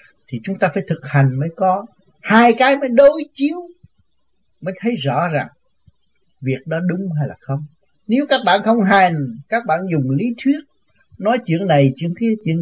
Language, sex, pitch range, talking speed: Vietnamese, male, 135-195 Hz, 185 wpm